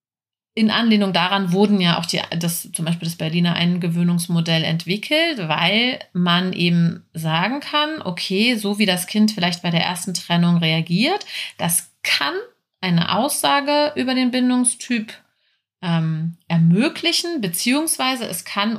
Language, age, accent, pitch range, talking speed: German, 30-49, German, 170-230 Hz, 135 wpm